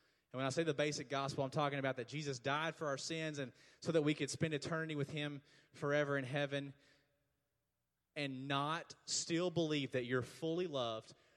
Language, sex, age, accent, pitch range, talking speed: English, male, 30-49, American, 140-170 Hz, 190 wpm